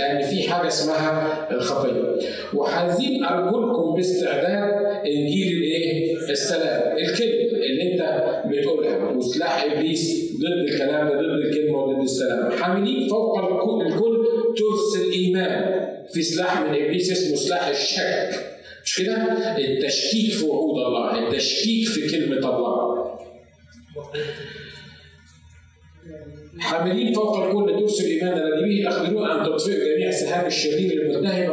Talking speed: 115 wpm